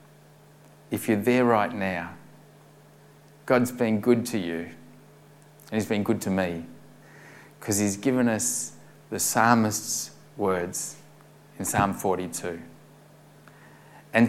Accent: Australian